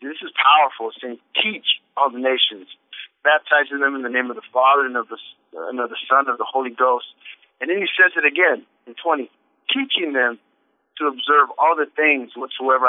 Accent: American